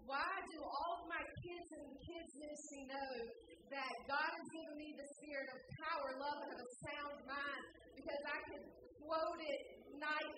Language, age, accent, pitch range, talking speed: English, 30-49, American, 230-300 Hz, 180 wpm